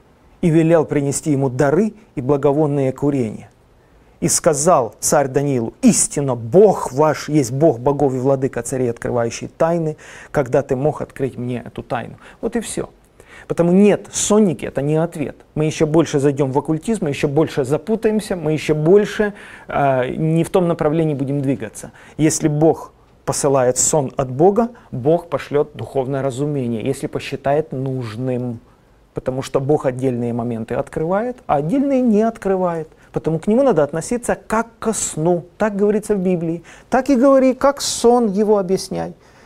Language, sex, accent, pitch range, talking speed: Russian, male, native, 140-200 Hz, 155 wpm